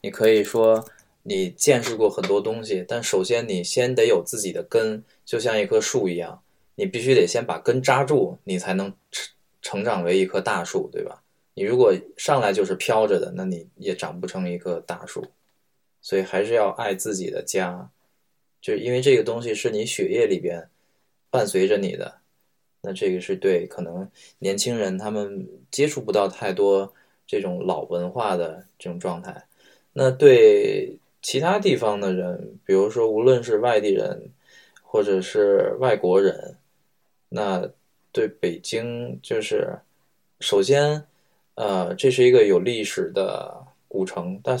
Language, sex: English, male